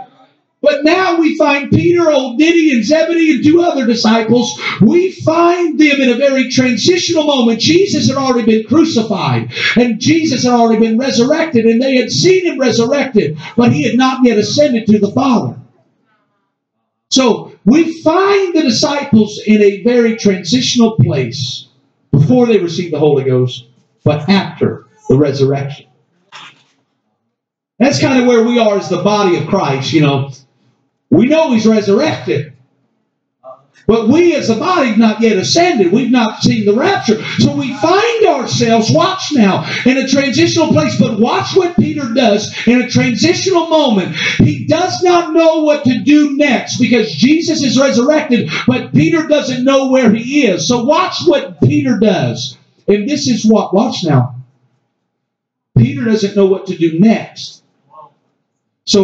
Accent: American